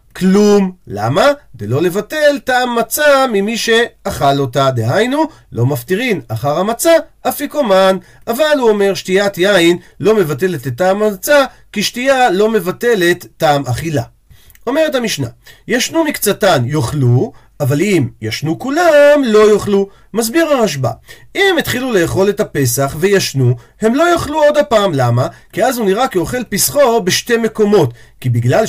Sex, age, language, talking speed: male, 40-59, Hebrew, 140 wpm